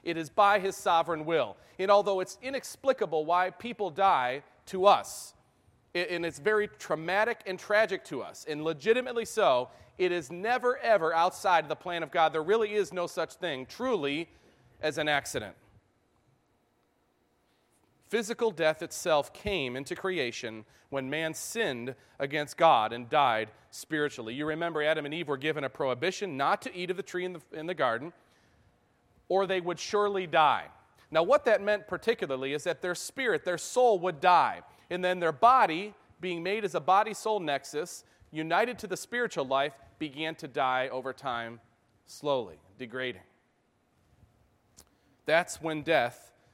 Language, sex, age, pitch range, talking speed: English, male, 40-59, 140-200 Hz, 155 wpm